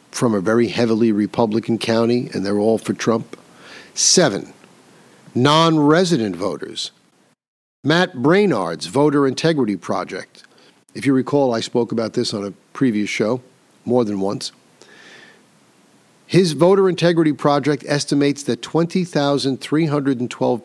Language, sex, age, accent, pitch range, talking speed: English, male, 50-69, American, 115-150 Hz, 115 wpm